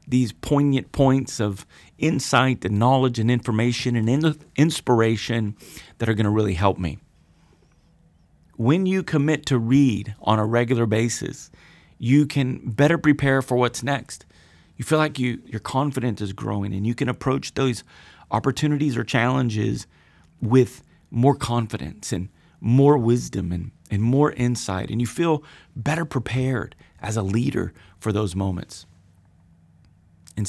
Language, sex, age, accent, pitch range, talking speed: English, male, 30-49, American, 105-135 Hz, 140 wpm